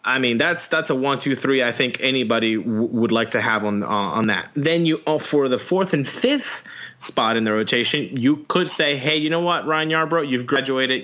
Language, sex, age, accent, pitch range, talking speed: English, male, 30-49, American, 120-160 Hz, 235 wpm